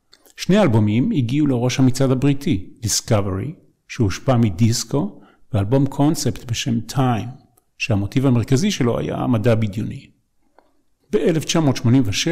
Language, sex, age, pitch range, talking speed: Hebrew, male, 50-69, 115-145 Hz, 95 wpm